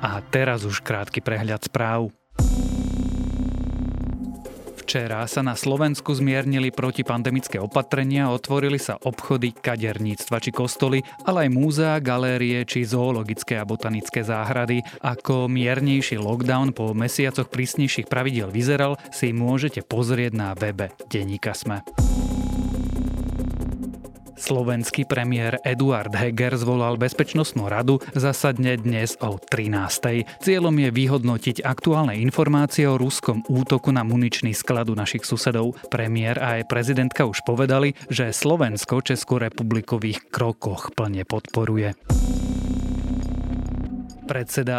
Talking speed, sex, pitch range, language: 105 wpm, male, 110-135 Hz, Slovak